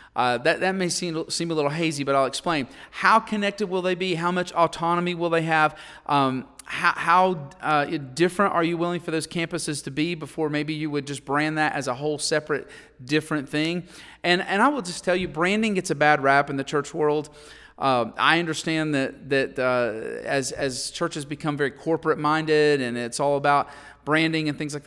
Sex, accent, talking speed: male, American, 205 wpm